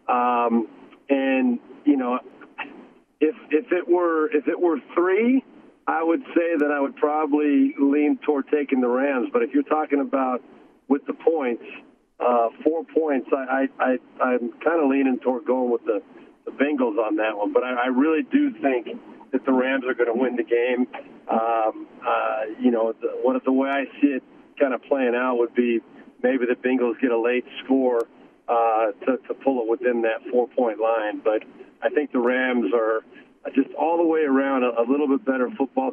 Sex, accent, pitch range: male, American, 120-150 Hz